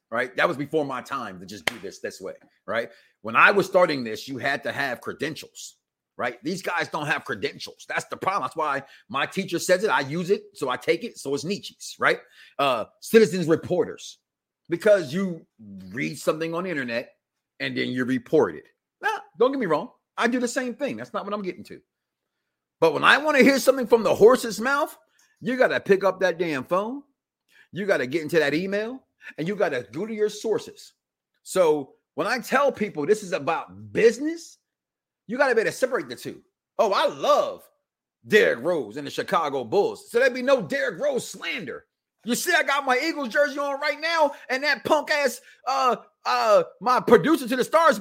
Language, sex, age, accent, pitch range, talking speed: English, male, 40-59, American, 200-315 Hz, 210 wpm